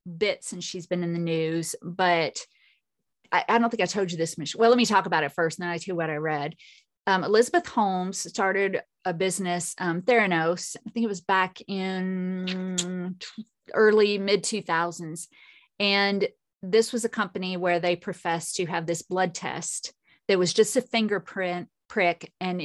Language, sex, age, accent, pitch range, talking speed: English, female, 30-49, American, 175-215 Hz, 185 wpm